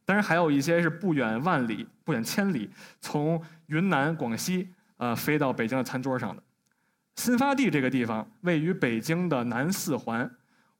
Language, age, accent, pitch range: Chinese, 20-39, native, 130-200 Hz